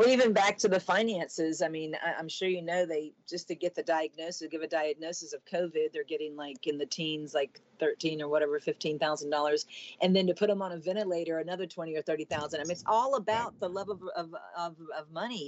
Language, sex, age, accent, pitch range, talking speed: English, female, 40-59, American, 150-190 Hz, 215 wpm